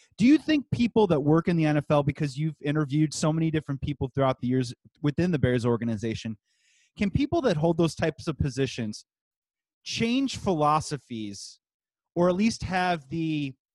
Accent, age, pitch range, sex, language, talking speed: American, 30-49, 135-170 Hz, male, English, 165 wpm